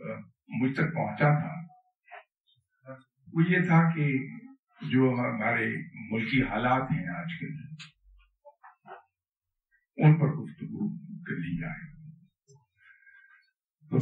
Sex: male